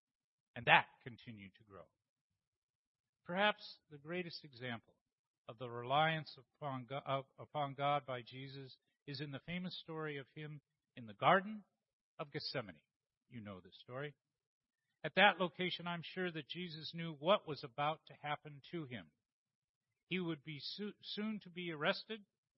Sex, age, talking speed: male, 50-69, 145 wpm